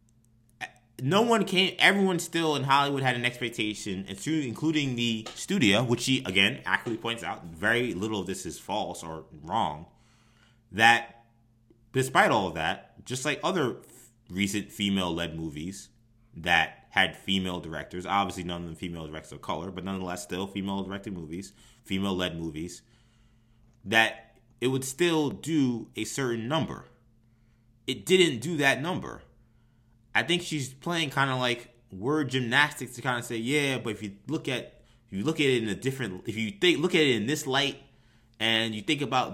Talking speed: 170 wpm